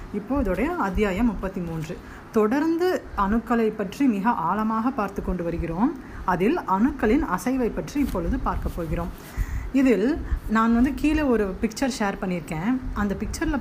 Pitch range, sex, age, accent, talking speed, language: 190-245 Hz, female, 30-49, native, 130 wpm, Tamil